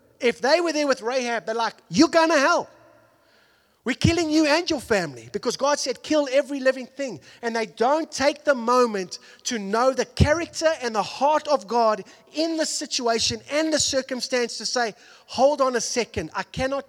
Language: English